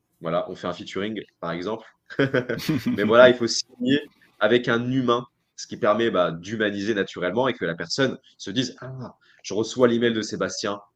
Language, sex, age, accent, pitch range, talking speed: French, male, 20-39, French, 100-130 Hz, 185 wpm